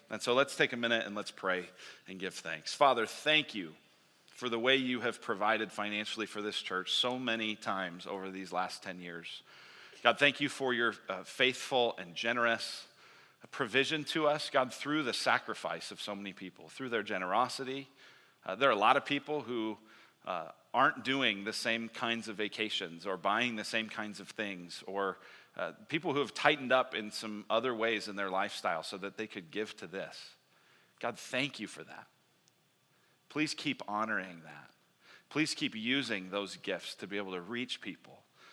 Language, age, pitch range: English, 40-59, 95-125 Hz